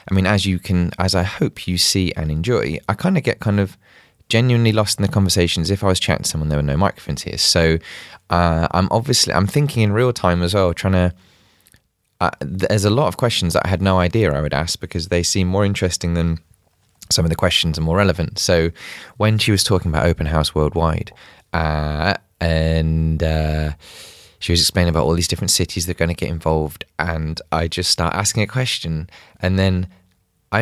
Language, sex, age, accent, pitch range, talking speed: English, male, 20-39, British, 85-110 Hz, 215 wpm